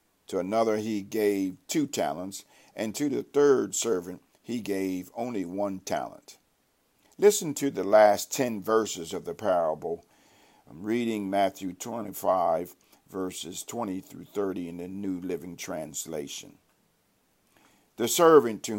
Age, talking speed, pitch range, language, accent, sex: 50-69, 130 wpm, 100-135 Hz, English, American, male